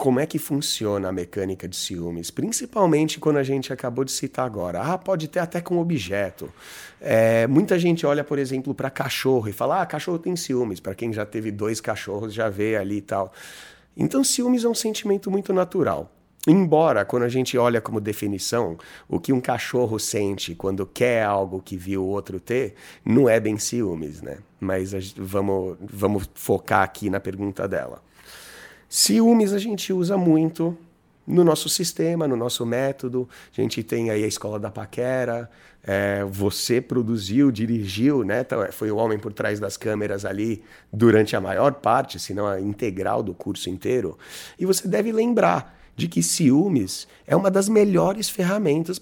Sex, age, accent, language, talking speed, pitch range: male, 30-49, Brazilian, Portuguese, 175 wpm, 105-165 Hz